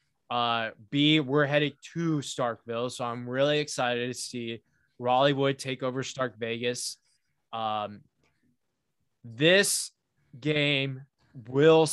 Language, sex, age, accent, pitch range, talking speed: English, male, 20-39, American, 125-150 Hz, 105 wpm